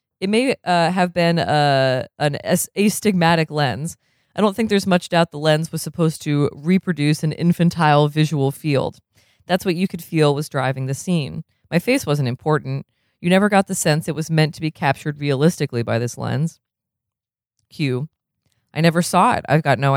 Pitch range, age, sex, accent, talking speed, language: 140-185 Hz, 20-39, female, American, 185 wpm, English